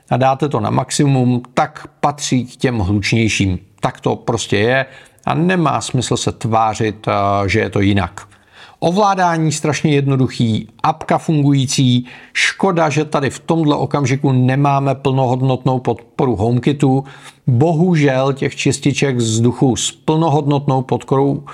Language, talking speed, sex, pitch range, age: Czech, 125 wpm, male, 120-150 Hz, 40-59